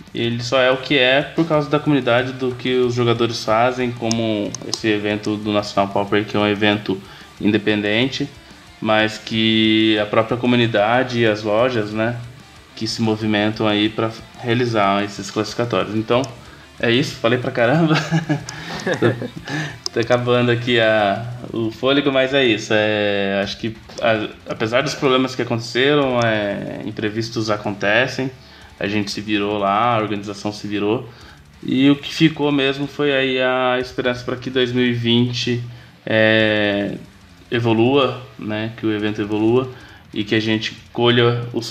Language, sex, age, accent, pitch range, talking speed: Portuguese, male, 20-39, Brazilian, 105-125 Hz, 150 wpm